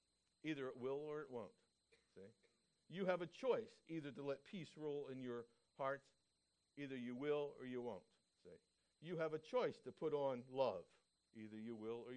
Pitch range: 130-185 Hz